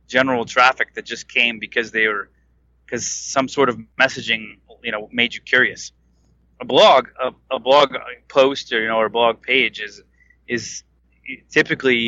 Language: English